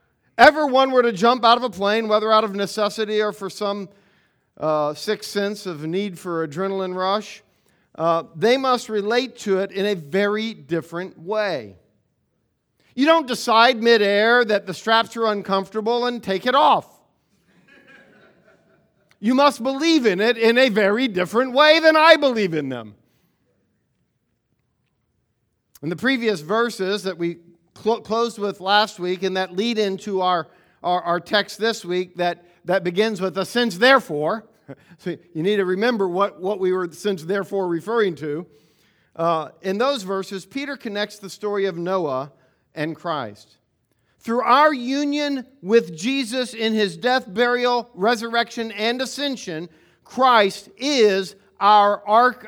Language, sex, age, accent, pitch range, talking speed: English, male, 50-69, American, 180-235 Hz, 150 wpm